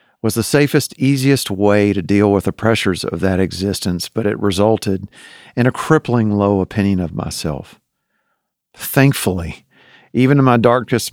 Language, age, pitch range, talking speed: English, 50-69, 100-130 Hz, 150 wpm